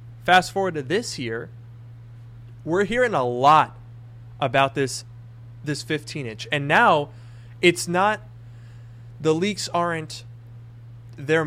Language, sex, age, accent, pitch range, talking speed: English, male, 20-39, American, 115-150 Hz, 110 wpm